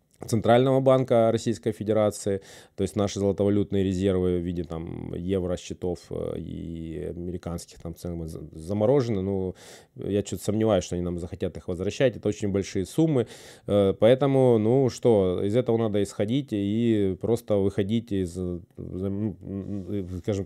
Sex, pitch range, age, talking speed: male, 100-125 Hz, 20-39, 125 wpm